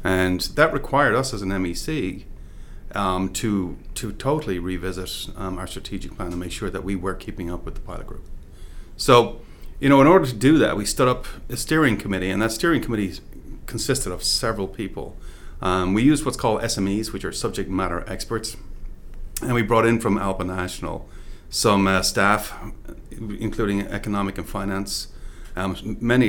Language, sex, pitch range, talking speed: English, male, 90-110 Hz, 175 wpm